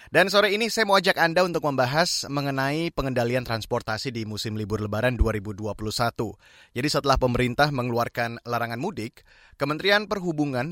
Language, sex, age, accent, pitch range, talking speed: Indonesian, male, 30-49, native, 115-150 Hz, 140 wpm